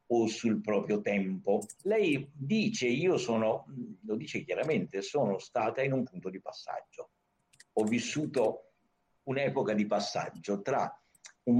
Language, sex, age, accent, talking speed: Italian, male, 60-79, native, 130 wpm